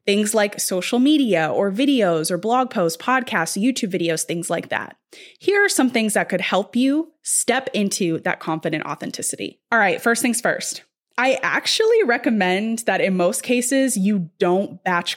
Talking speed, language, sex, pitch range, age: 170 wpm, English, female, 185-255 Hz, 20-39